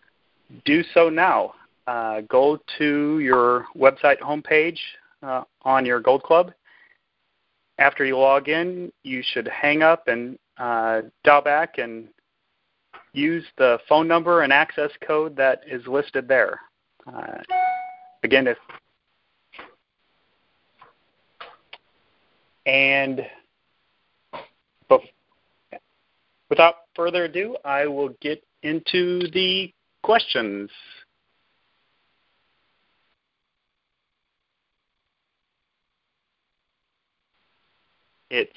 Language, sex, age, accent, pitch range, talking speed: English, male, 30-49, American, 130-175 Hz, 80 wpm